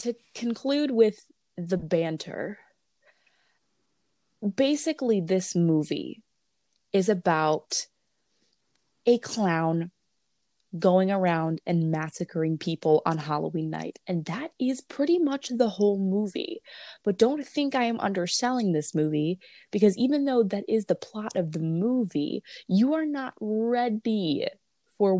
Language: English